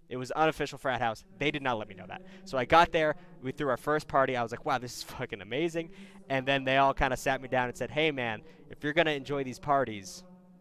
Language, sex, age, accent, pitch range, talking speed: English, male, 20-39, American, 115-170 Hz, 275 wpm